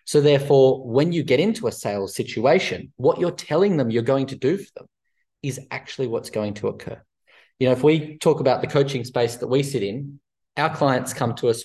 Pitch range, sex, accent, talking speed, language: 115-145 Hz, male, Australian, 220 wpm, English